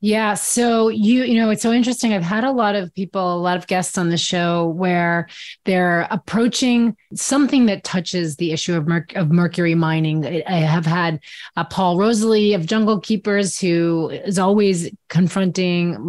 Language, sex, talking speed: English, female, 175 wpm